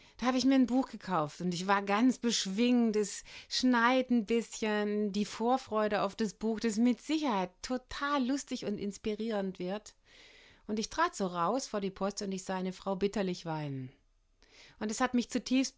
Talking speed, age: 185 wpm, 30-49